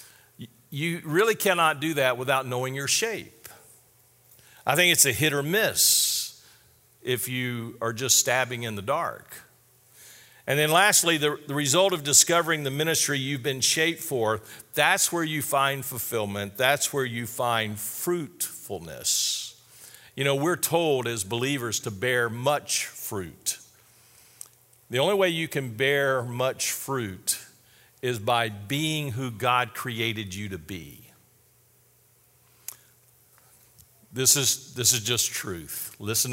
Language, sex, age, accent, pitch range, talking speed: English, male, 50-69, American, 115-145 Hz, 135 wpm